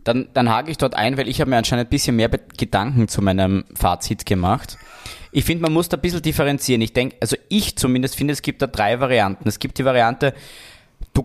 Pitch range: 110-140 Hz